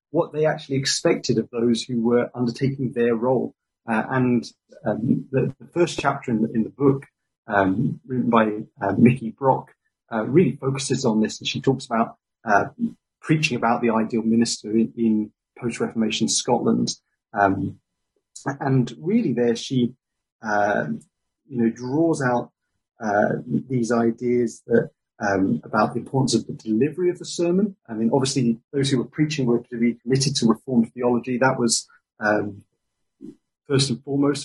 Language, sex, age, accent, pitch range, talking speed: English, male, 30-49, British, 115-135 Hz, 160 wpm